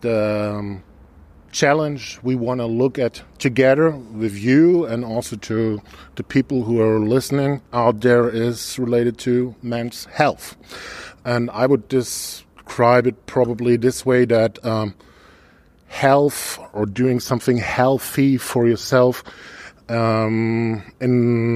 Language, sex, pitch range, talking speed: German, male, 115-130 Hz, 125 wpm